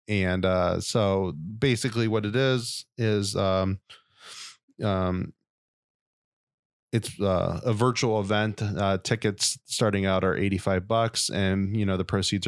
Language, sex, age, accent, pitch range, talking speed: English, male, 20-39, American, 95-110 Hz, 130 wpm